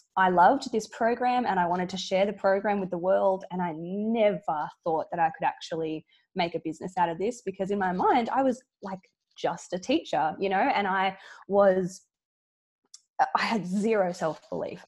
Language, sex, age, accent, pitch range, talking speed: English, female, 20-39, Australian, 175-225 Hz, 190 wpm